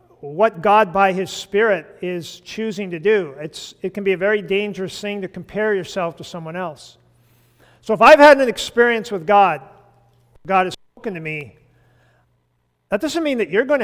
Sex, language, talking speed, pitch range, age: male, English, 180 wpm, 135-215 Hz, 50-69